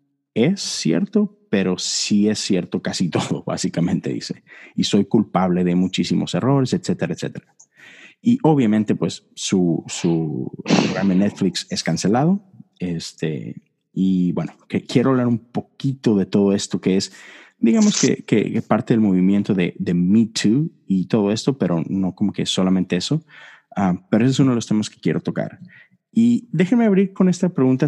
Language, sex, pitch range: Spanish, male, 95-140 Hz